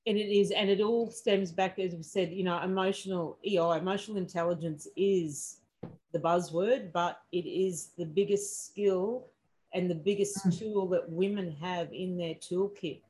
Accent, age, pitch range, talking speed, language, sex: Australian, 40-59, 160-190 Hz, 165 wpm, English, female